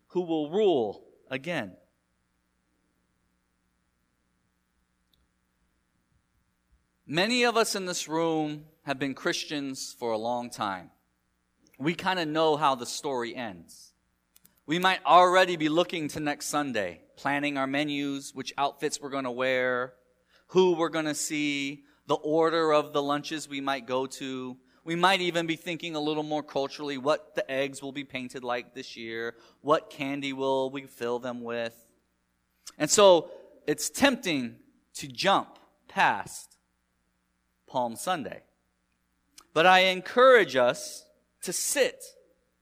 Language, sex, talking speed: English, male, 135 wpm